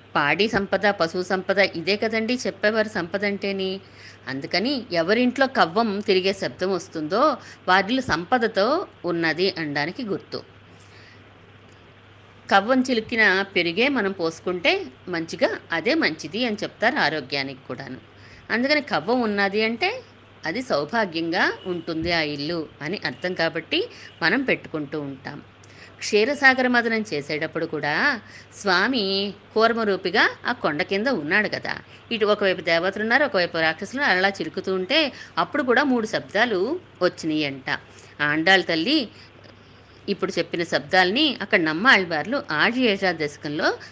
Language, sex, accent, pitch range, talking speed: Telugu, female, native, 160-225 Hz, 110 wpm